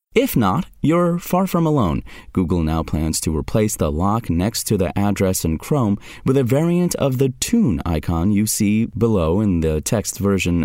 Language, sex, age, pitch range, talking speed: English, male, 30-49, 85-120 Hz, 185 wpm